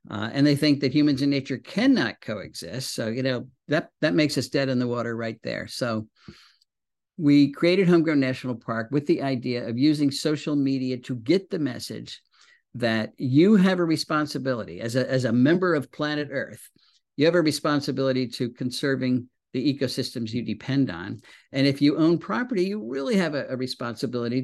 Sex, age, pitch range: male, 50-69, 125-150 Hz